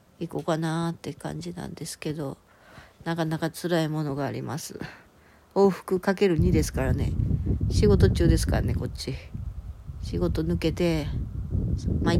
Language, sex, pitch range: Japanese, female, 110-180 Hz